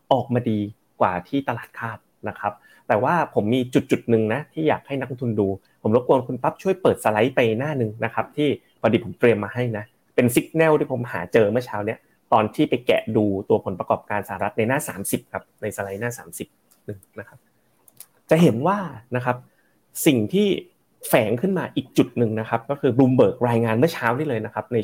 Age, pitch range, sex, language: 30-49, 110-145 Hz, male, Thai